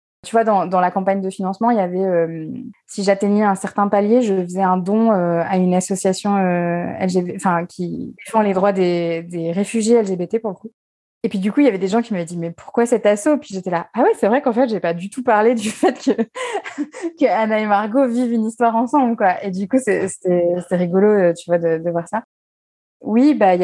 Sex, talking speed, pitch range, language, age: female, 250 wpm, 185-225 Hz, French, 20-39